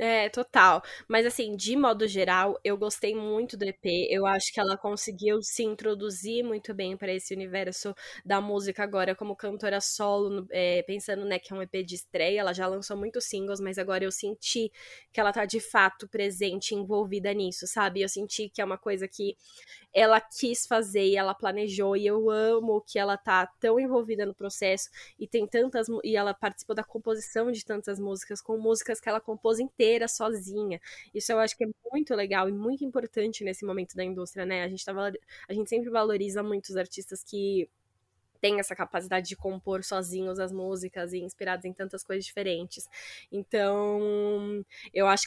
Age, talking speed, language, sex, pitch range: 10-29, 185 wpm, Portuguese, female, 195-220 Hz